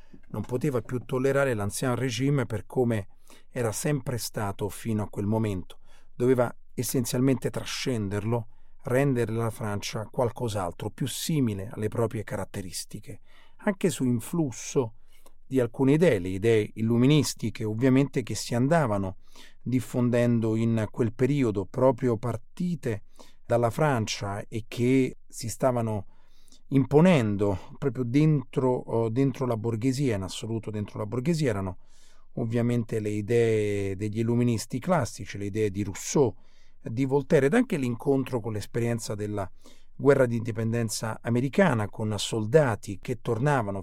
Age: 40-59